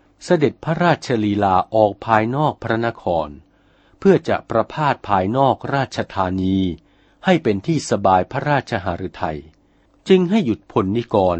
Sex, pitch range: male, 95-140 Hz